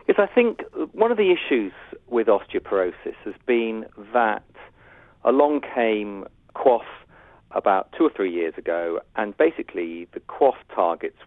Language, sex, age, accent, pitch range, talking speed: English, male, 40-59, British, 100-160 Hz, 140 wpm